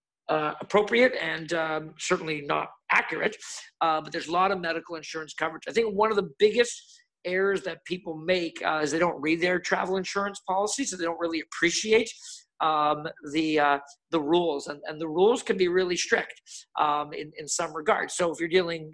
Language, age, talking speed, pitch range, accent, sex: English, 50-69, 195 wpm, 160-195 Hz, American, male